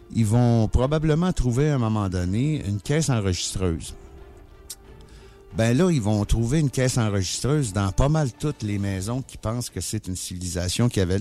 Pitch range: 95-125 Hz